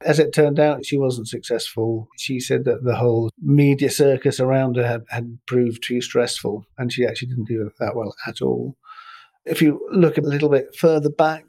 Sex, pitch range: male, 115-140 Hz